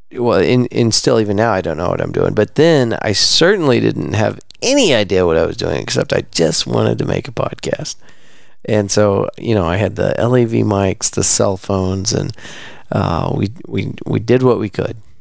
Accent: American